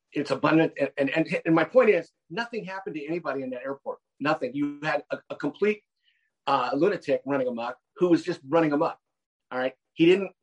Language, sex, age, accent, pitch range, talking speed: English, male, 50-69, American, 140-175 Hz, 195 wpm